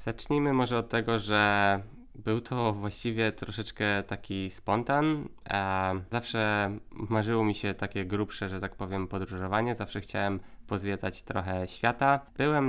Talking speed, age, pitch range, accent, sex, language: 130 wpm, 20-39, 100-115 Hz, native, male, Polish